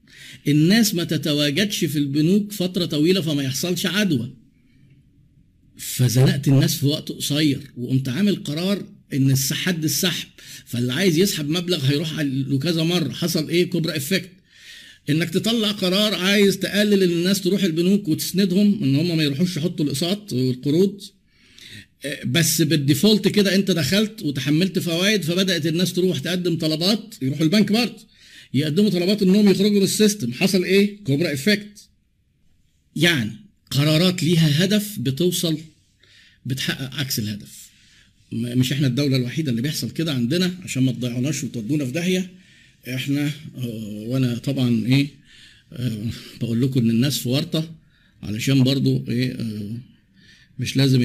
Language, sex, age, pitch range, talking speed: Arabic, male, 50-69, 130-185 Hz, 135 wpm